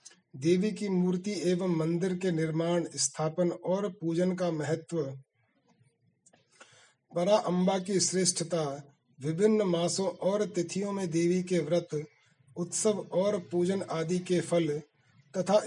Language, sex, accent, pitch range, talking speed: Hindi, male, native, 155-190 Hz, 120 wpm